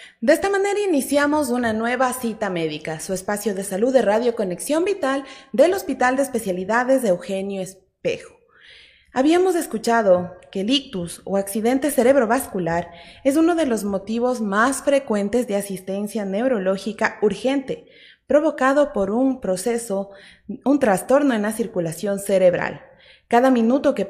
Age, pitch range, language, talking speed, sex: 30-49, 195-265 Hz, Spanish, 135 wpm, female